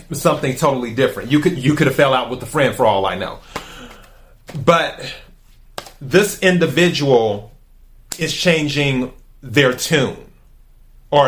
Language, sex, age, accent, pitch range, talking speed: English, male, 30-49, American, 130-165 Hz, 135 wpm